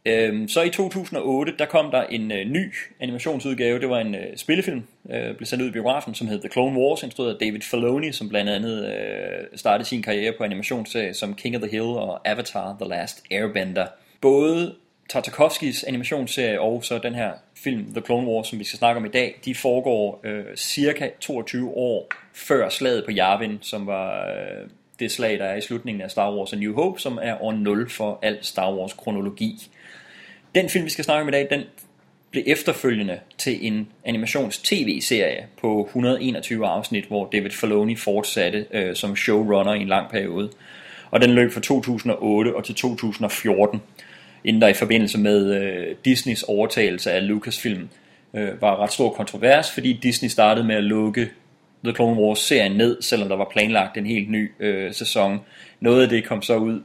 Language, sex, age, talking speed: English, male, 30-49, 190 wpm